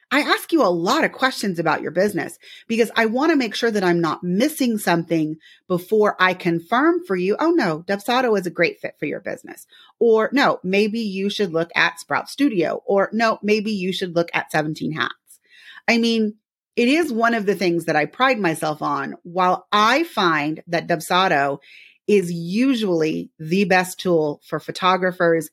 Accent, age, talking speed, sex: American, 30-49, 185 wpm, female